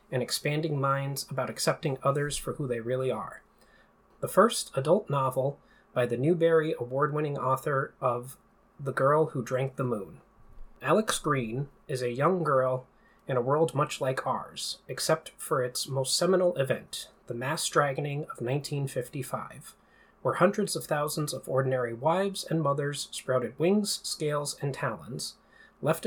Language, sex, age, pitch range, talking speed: English, male, 30-49, 130-165 Hz, 150 wpm